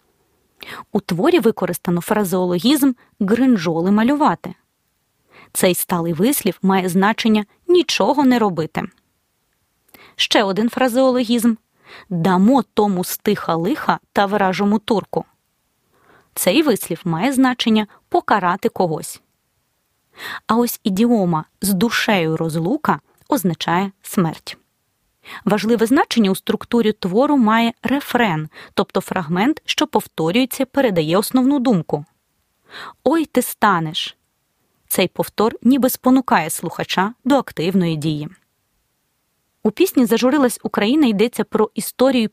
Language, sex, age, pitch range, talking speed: Ukrainian, female, 20-39, 185-245 Hz, 100 wpm